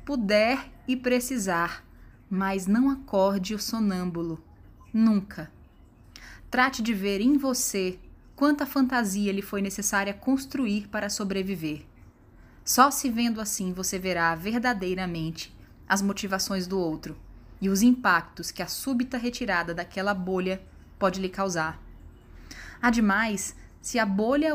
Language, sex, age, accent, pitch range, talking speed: Portuguese, female, 10-29, Brazilian, 180-235 Hz, 120 wpm